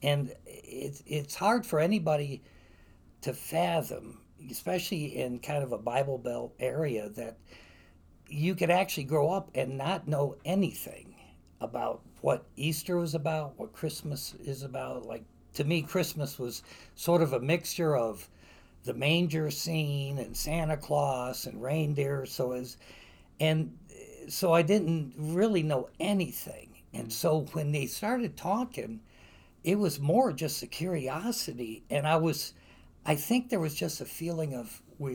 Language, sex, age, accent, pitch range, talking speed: English, male, 60-79, American, 125-170 Hz, 145 wpm